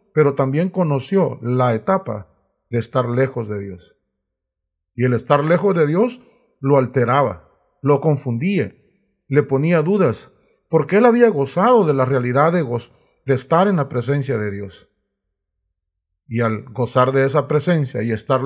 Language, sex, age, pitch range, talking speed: Spanish, male, 40-59, 110-165 Hz, 150 wpm